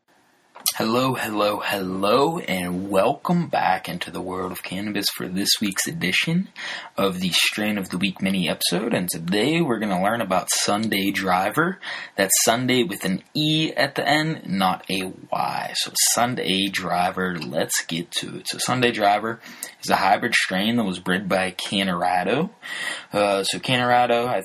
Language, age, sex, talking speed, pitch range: English, 20-39, male, 160 wpm, 95-125 Hz